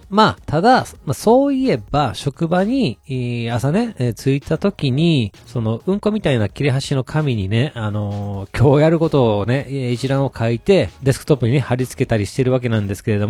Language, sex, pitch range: Japanese, male, 115-155 Hz